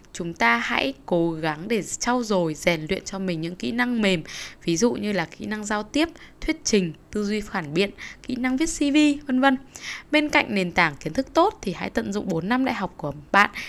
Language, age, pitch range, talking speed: Vietnamese, 10-29, 165-240 Hz, 230 wpm